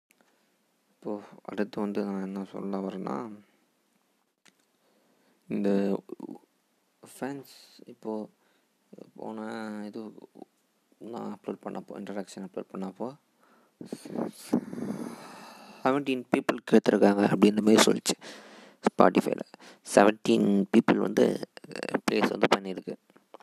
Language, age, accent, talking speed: Tamil, 20-39, native, 80 wpm